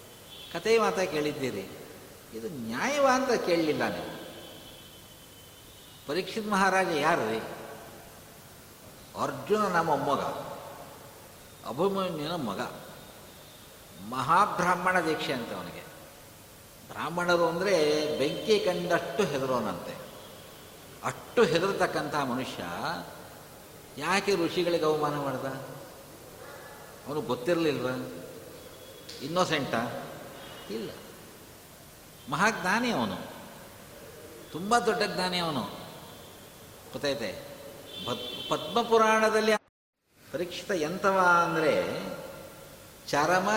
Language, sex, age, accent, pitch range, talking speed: Kannada, male, 60-79, native, 150-195 Hz, 70 wpm